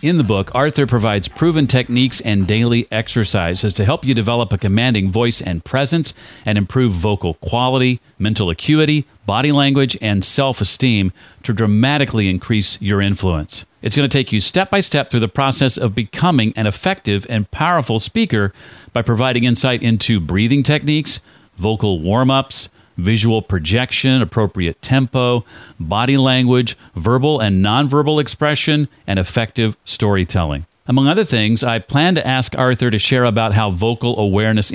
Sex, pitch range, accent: male, 105-135 Hz, American